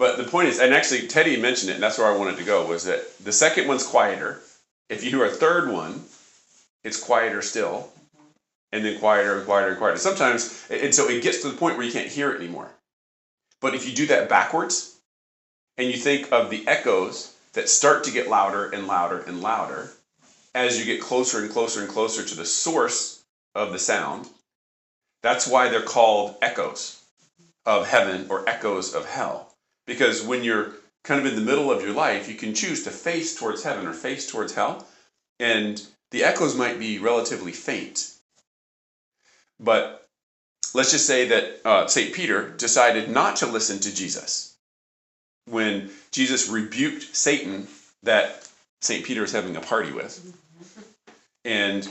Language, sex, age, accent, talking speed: English, male, 40-59, American, 180 wpm